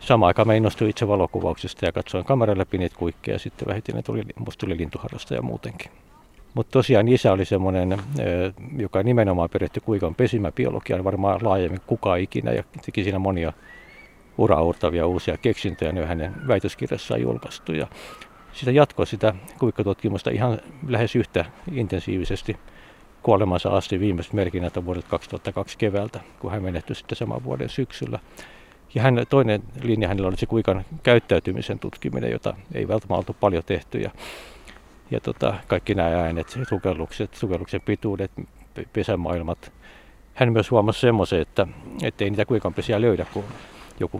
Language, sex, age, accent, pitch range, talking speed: Finnish, male, 60-79, native, 90-115 Hz, 140 wpm